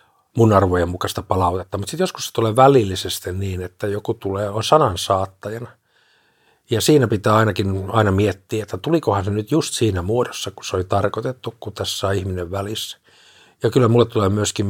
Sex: male